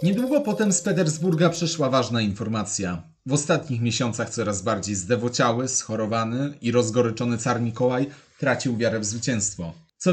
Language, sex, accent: Polish, male, native